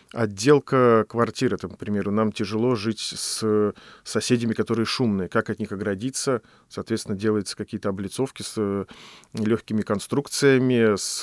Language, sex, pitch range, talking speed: Russian, male, 105-125 Hz, 135 wpm